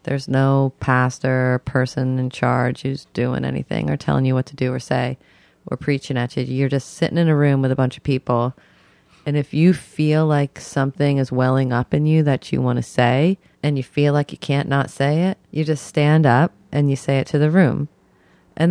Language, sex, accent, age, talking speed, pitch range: English, female, American, 30-49, 225 wpm, 130-155 Hz